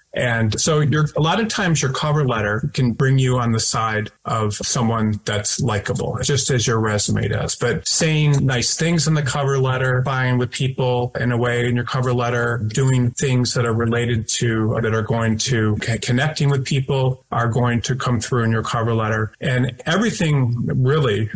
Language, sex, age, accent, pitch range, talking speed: English, male, 30-49, American, 110-140 Hz, 190 wpm